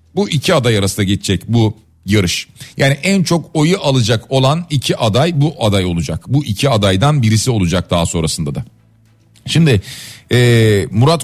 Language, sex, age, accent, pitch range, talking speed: Turkish, male, 40-59, native, 100-135 Hz, 155 wpm